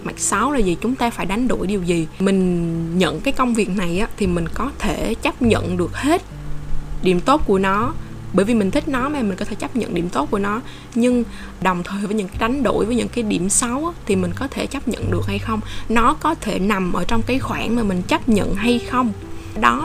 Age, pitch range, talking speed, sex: 10-29, 185-245 Hz, 250 wpm, female